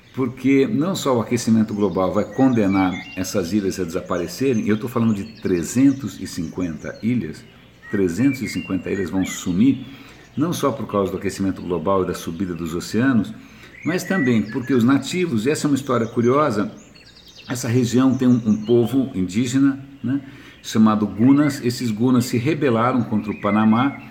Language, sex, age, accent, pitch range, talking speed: Portuguese, male, 60-79, Brazilian, 105-135 Hz, 155 wpm